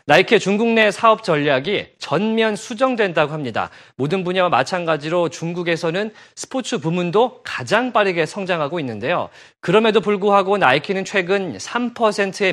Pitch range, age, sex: 160-210 Hz, 40-59, male